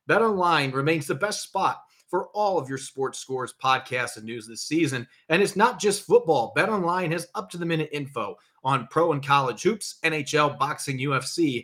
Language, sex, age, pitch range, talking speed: English, male, 30-49, 135-170 Hz, 175 wpm